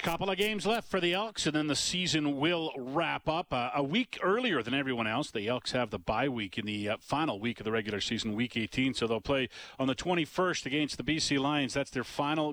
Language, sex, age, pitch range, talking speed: English, male, 40-59, 120-150 Hz, 245 wpm